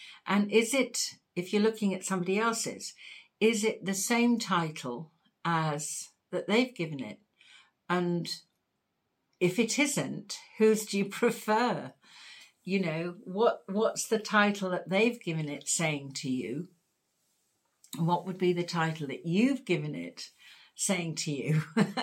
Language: English